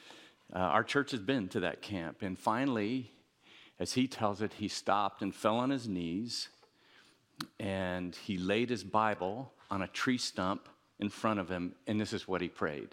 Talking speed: 185 wpm